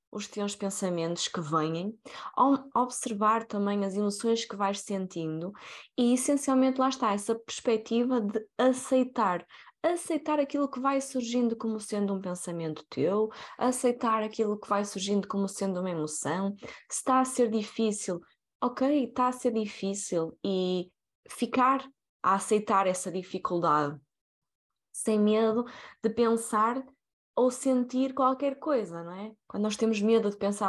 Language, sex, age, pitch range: Portuguese, female, 20-39, 195-255 Hz